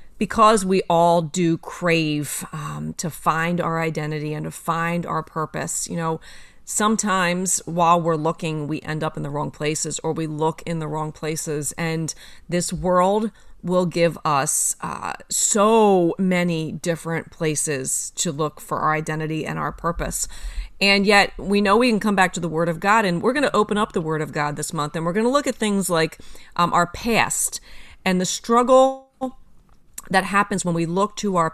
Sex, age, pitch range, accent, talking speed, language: female, 30-49, 165-215 Hz, American, 190 wpm, English